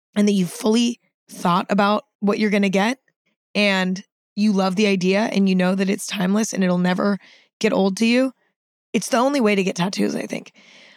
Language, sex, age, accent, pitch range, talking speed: English, female, 20-39, American, 195-260 Hz, 210 wpm